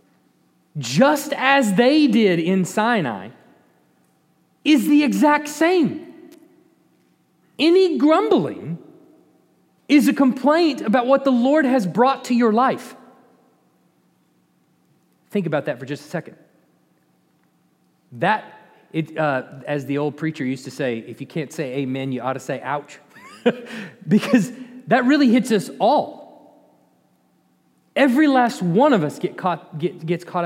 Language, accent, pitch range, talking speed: English, American, 155-255 Hz, 125 wpm